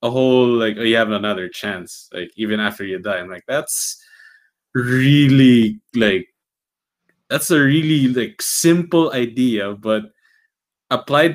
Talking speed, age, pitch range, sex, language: 135 wpm, 20-39, 110-135 Hz, male, English